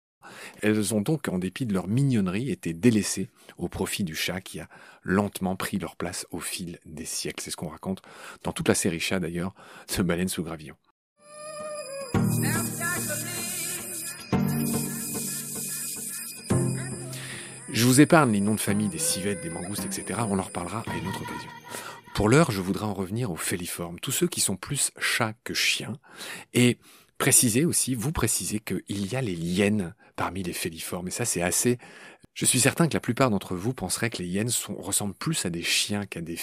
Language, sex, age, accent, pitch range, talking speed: French, male, 40-59, French, 95-125 Hz, 180 wpm